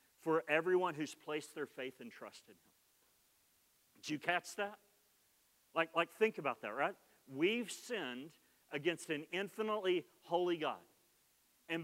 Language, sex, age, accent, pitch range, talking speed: English, male, 40-59, American, 170-225 Hz, 140 wpm